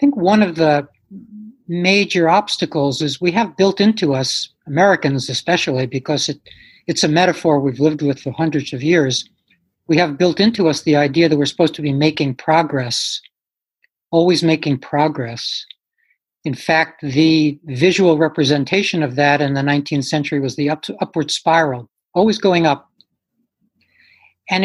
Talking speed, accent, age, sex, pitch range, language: 150 wpm, American, 60-79, male, 145-180 Hz, English